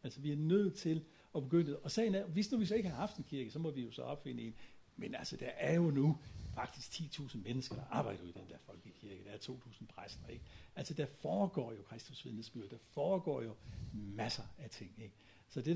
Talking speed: 235 wpm